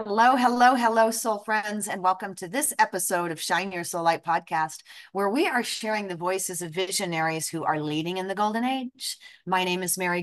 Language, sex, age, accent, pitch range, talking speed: English, female, 30-49, American, 170-220 Hz, 205 wpm